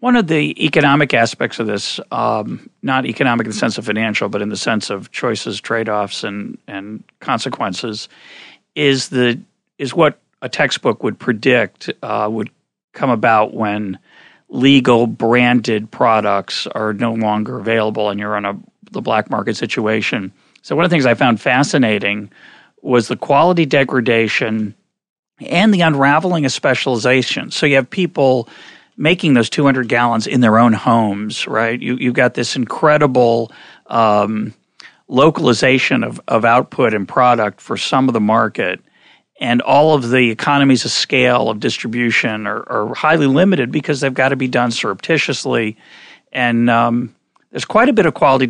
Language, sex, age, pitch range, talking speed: English, male, 40-59, 110-140 Hz, 155 wpm